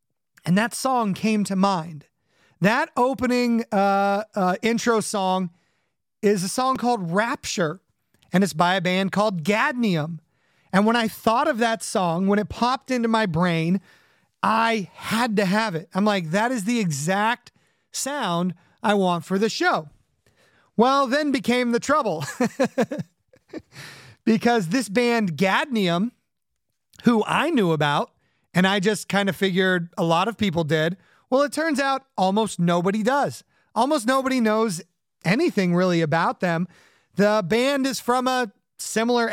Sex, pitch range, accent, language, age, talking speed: male, 185-235 Hz, American, English, 30-49, 150 wpm